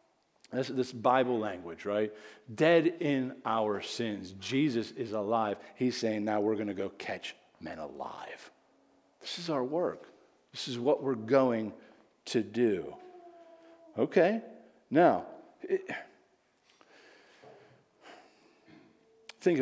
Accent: American